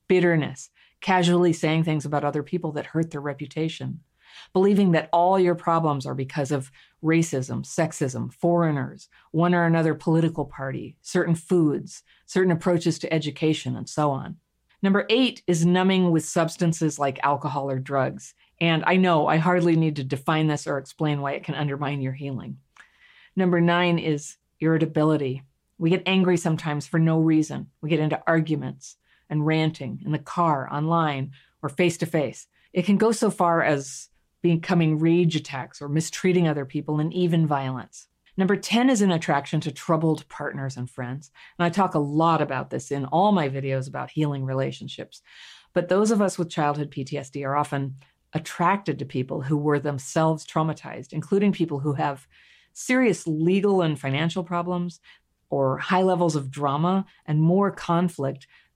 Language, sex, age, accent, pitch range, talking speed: English, female, 40-59, American, 145-175 Hz, 160 wpm